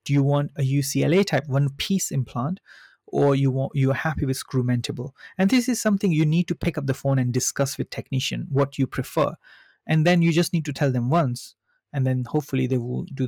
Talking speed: 215 wpm